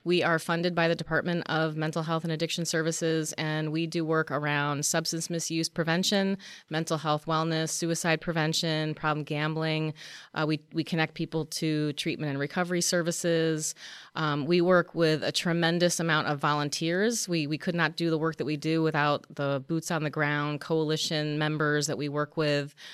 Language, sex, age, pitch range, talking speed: English, female, 30-49, 155-180 Hz, 180 wpm